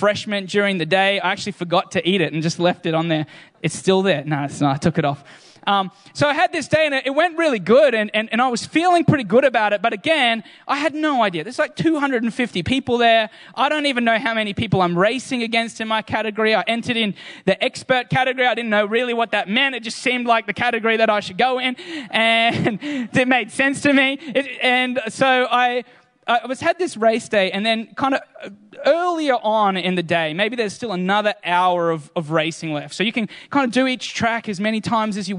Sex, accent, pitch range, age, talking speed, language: male, Australian, 195-260 Hz, 20-39, 240 wpm, English